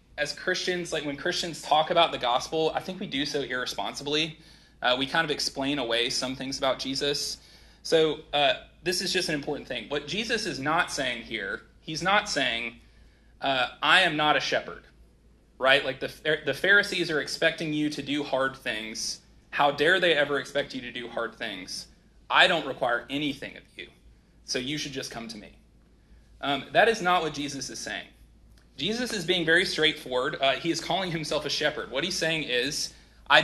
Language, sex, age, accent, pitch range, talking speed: English, male, 30-49, American, 135-165 Hz, 195 wpm